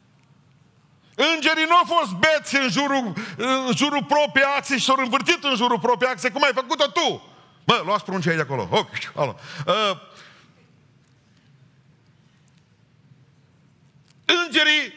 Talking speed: 110 wpm